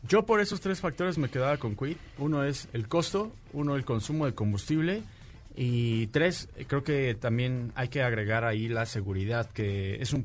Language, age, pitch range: Spanish, 30-49, 115-155 Hz